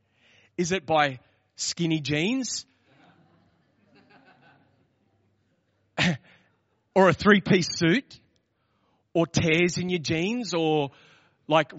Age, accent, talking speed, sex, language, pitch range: 30-49, Australian, 80 wpm, male, English, 150-250 Hz